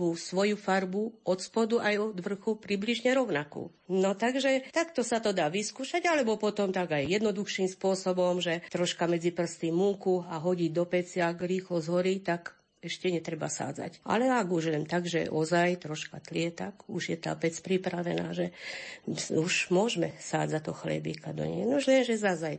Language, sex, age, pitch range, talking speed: Slovak, female, 50-69, 170-200 Hz, 170 wpm